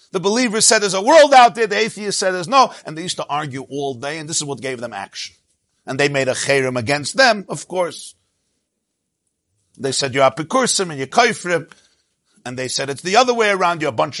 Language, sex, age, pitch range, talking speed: English, male, 50-69, 135-215 Hz, 230 wpm